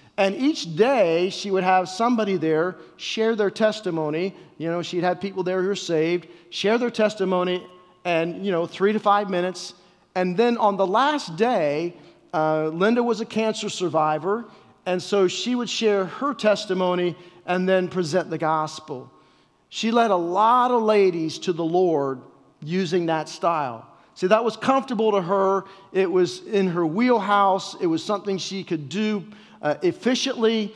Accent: American